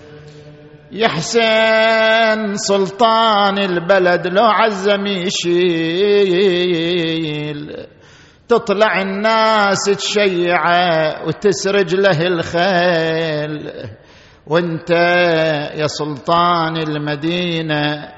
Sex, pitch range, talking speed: male, 135-175 Hz, 55 wpm